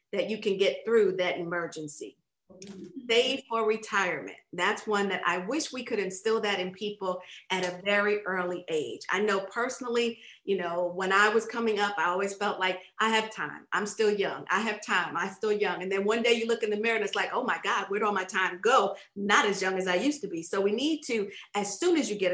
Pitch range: 185-230 Hz